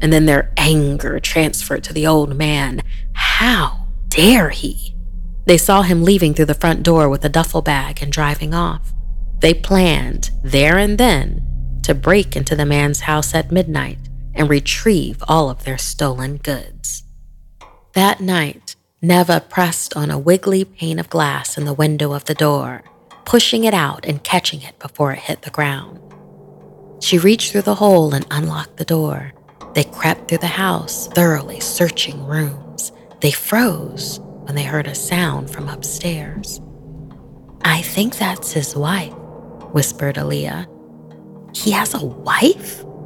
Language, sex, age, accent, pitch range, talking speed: English, female, 30-49, American, 140-175 Hz, 155 wpm